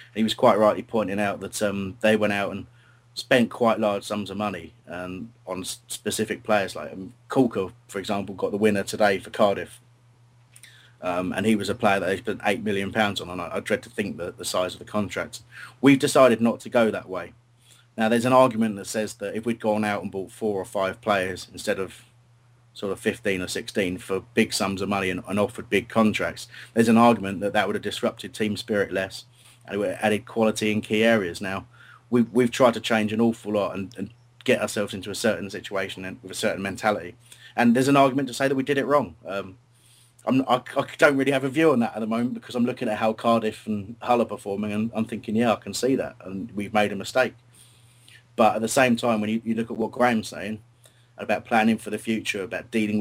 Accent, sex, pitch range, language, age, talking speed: British, male, 105-120 Hz, English, 30-49, 235 wpm